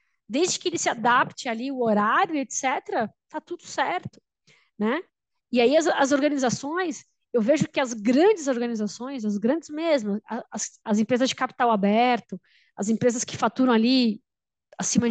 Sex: female